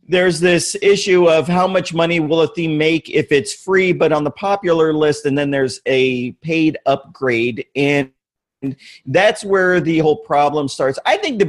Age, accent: 40-59, American